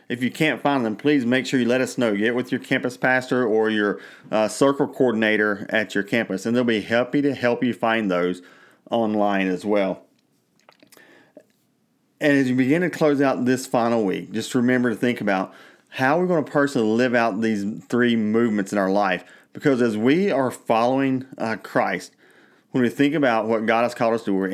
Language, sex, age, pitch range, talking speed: English, male, 30-49, 105-125 Hz, 205 wpm